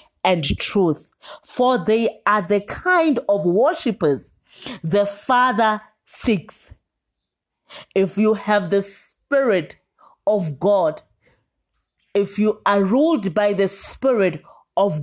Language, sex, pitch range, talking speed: English, female, 175-235 Hz, 110 wpm